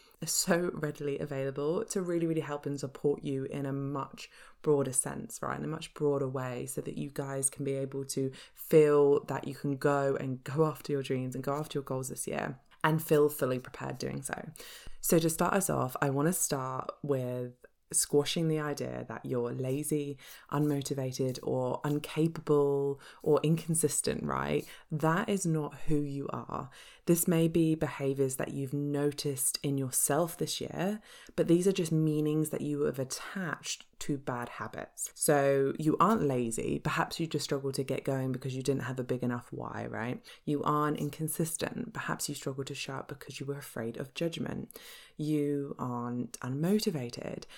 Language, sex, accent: English, female, British